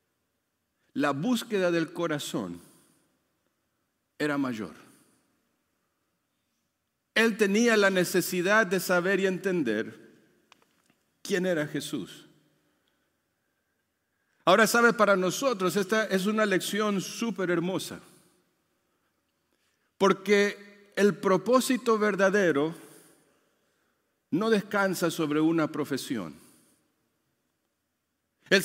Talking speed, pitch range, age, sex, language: 80 wpm, 175-220 Hz, 50-69, male, Spanish